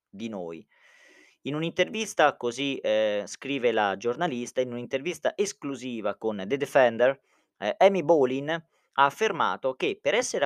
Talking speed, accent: 130 wpm, native